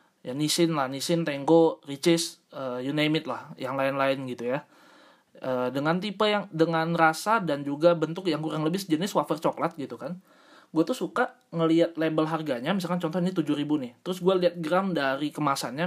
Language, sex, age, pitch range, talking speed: Indonesian, male, 20-39, 150-185 Hz, 190 wpm